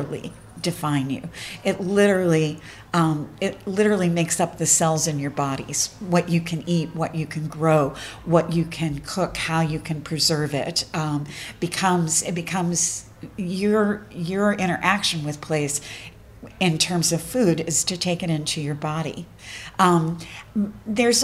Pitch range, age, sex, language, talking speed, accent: 155-185 Hz, 50-69, female, English, 150 wpm, American